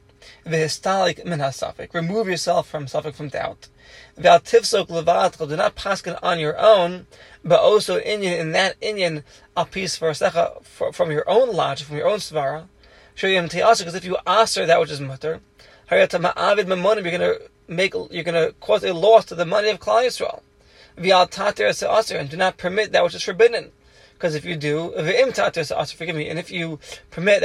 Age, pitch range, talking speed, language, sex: 30-49, 160-205 Hz, 195 wpm, English, male